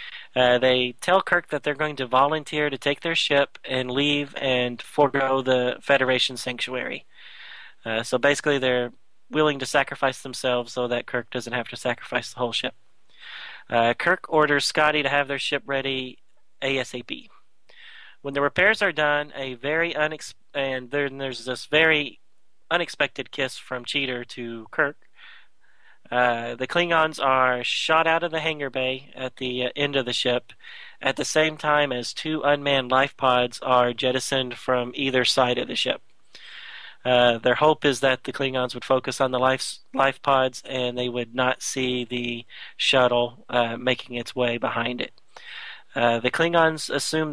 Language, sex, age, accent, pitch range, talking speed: English, male, 30-49, American, 125-145 Hz, 165 wpm